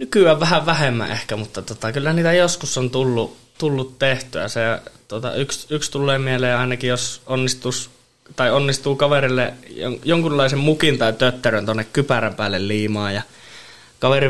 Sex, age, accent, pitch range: male, 20-39, native, 110-130 Hz